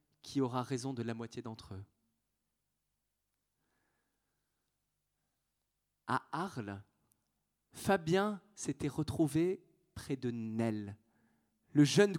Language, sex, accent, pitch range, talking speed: French, male, French, 125-165 Hz, 90 wpm